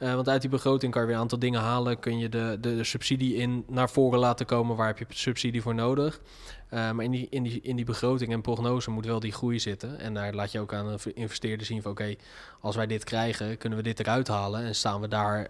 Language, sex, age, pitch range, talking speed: Dutch, male, 20-39, 115-130 Hz, 265 wpm